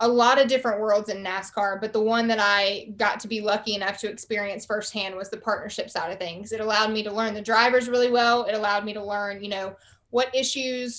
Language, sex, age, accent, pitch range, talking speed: English, female, 20-39, American, 205-235 Hz, 240 wpm